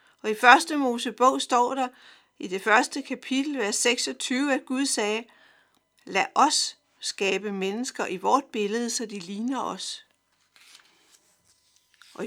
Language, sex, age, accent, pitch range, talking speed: Danish, female, 60-79, native, 210-265 Hz, 130 wpm